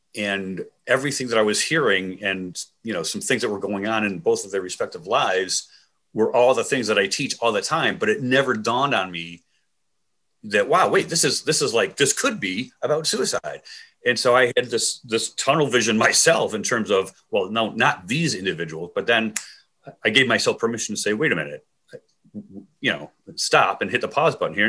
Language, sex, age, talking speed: English, male, 40-59, 210 wpm